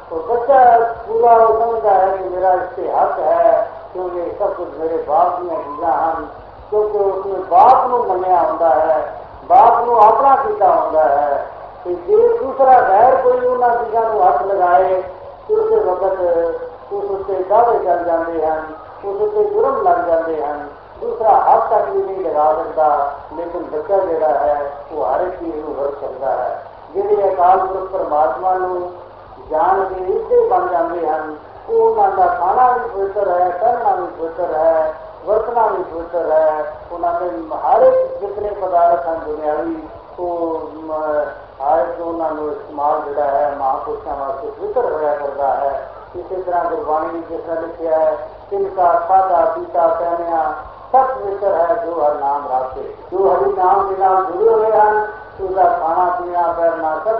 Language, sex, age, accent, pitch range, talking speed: Hindi, male, 50-69, native, 160-220 Hz, 85 wpm